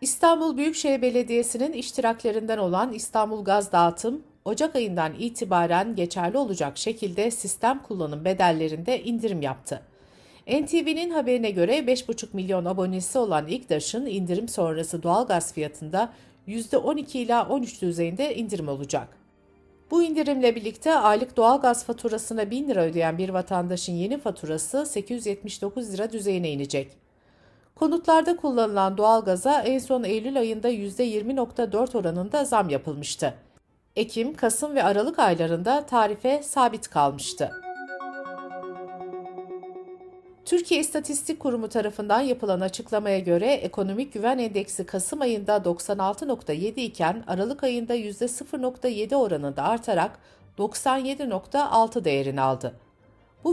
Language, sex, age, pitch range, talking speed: Turkish, female, 60-79, 180-255 Hz, 110 wpm